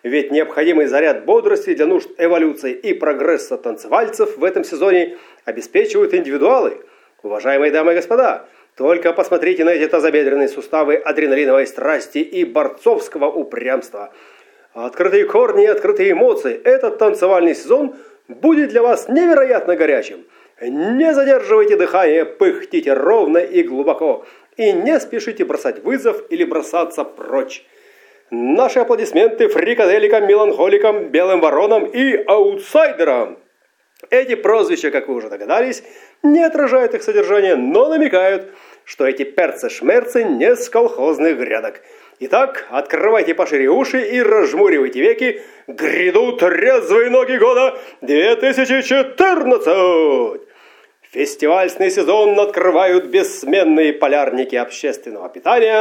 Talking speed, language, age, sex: 110 wpm, Russian, 40-59, male